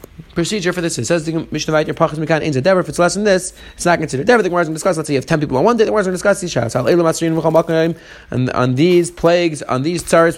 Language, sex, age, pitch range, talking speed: English, male, 30-49, 145-180 Hz, 260 wpm